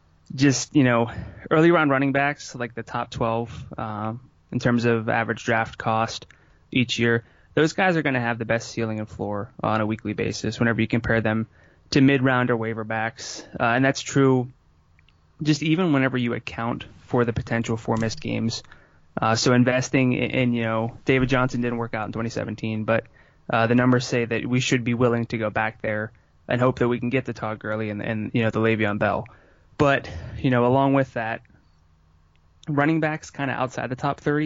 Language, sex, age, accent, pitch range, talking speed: English, male, 20-39, American, 110-130 Hz, 200 wpm